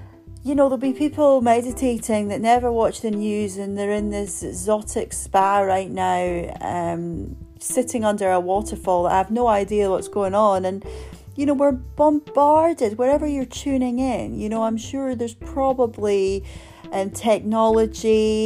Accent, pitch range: British, 175-235 Hz